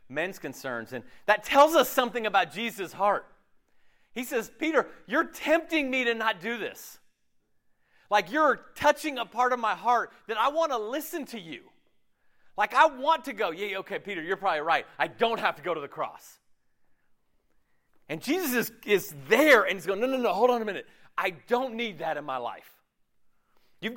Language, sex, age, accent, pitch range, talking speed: English, male, 40-59, American, 185-295 Hz, 190 wpm